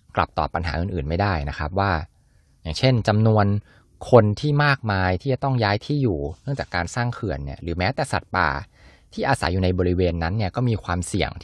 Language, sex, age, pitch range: Thai, male, 20-39, 80-110 Hz